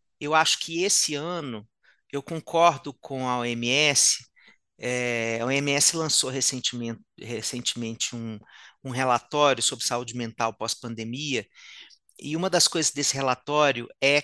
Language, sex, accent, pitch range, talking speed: Portuguese, male, Brazilian, 130-165 Hz, 120 wpm